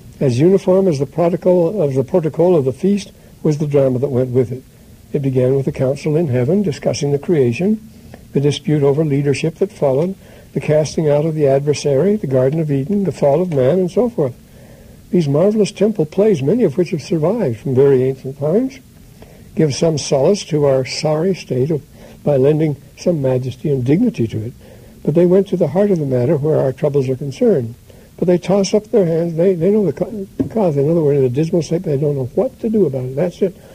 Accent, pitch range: American, 135-175 Hz